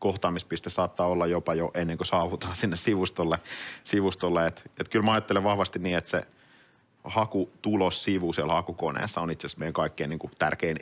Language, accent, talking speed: Finnish, native, 165 wpm